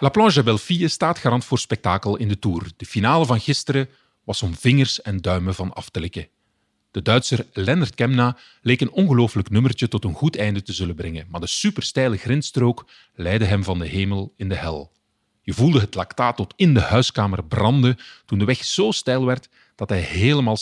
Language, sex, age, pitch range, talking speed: Dutch, male, 40-59, 95-130 Hz, 200 wpm